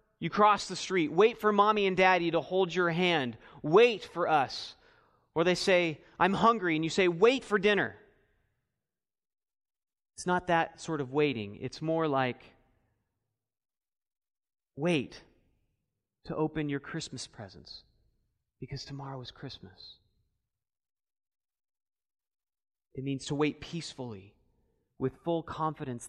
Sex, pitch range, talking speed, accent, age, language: male, 130-195 Hz, 125 wpm, American, 30-49, English